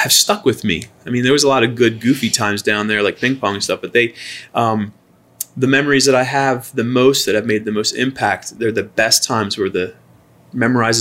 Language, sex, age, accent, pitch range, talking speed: English, male, 20-39, American, 110-130 Hz, 240 wpm